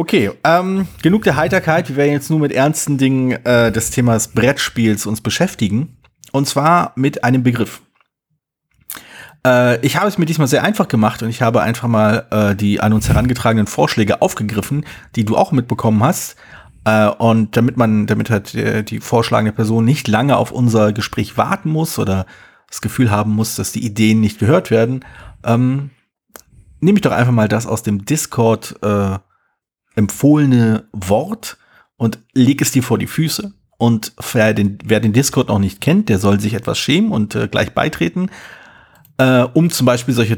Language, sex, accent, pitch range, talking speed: German, male, German, 110-145 Hz, 175 wpm